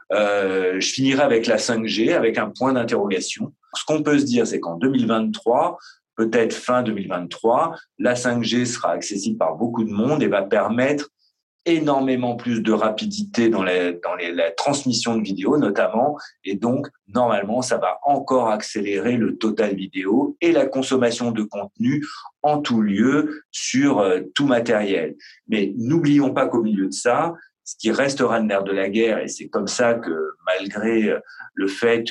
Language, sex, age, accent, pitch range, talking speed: French, male, 40-59, French, 105-135 Hz, 165 wpm